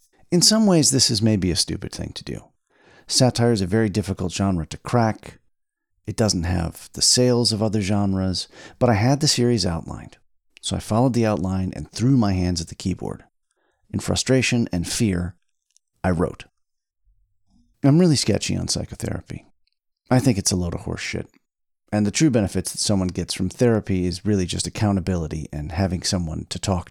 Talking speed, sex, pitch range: 185 wpm, male, 85-110 Hz